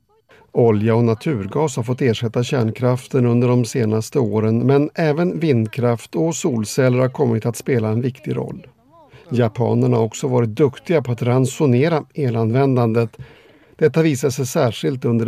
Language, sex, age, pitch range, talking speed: Swedish, male, 50-69, 120-140 Hz, 145 wpm